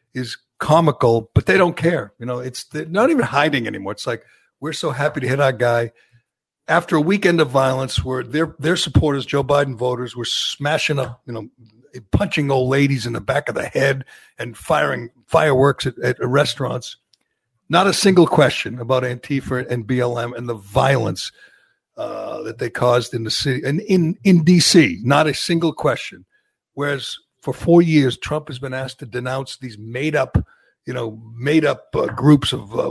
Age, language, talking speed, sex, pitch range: 60-79, English, 185 wpm, male, 125-155 Hz